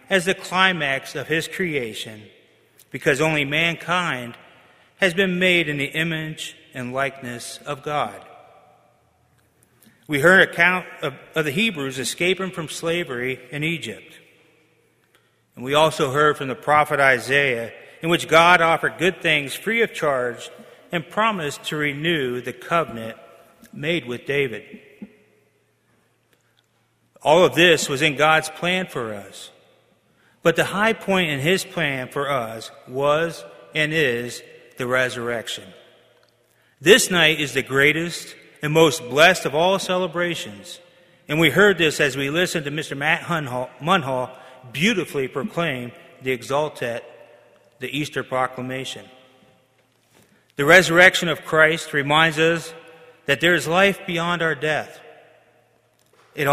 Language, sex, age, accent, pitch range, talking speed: English, male, 40-59, American, 130-170 Hz, 130 wpm